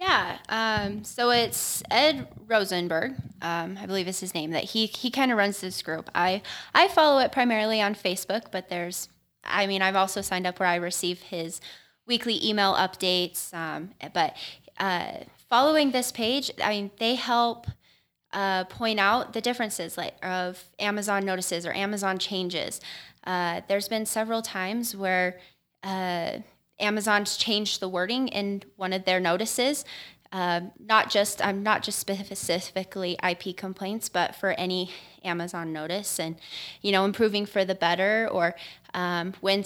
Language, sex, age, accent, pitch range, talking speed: English, female, 10-29, American, 180-220 Hz, 155 wpm